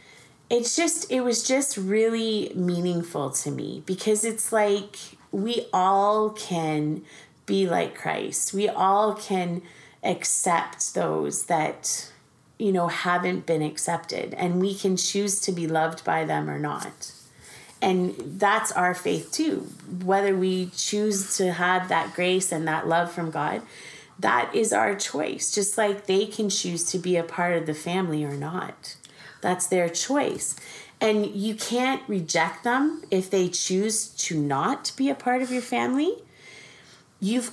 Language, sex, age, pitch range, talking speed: English, female, 30-49, 170-210 Hz, 150 wpm